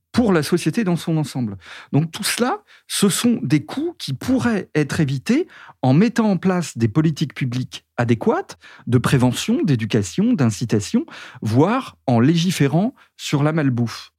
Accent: French